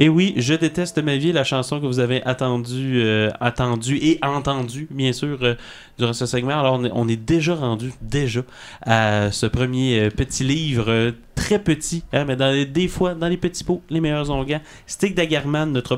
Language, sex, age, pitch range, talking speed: French, male, 30-49, 115-150 Hz, 180 wpm